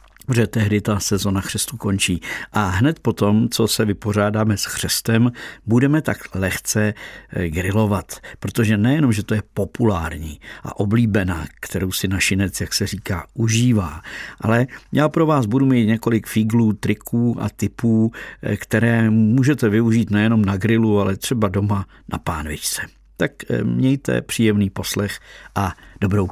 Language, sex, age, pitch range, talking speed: Czech, male, 50-69, 100-115 Hz, 140 wpm